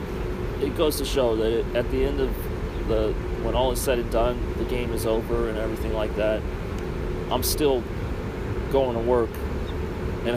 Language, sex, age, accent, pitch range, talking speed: English, male, 30-49, American, 90-110 Hz, 175 wpm